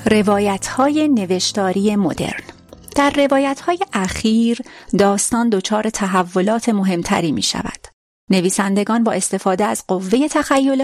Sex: female